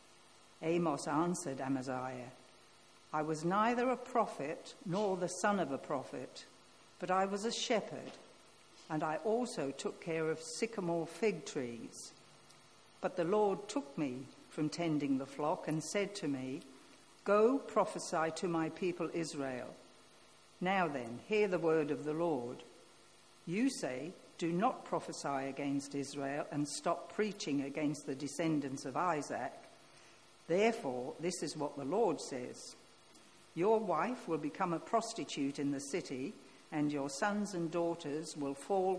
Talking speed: 145 wpm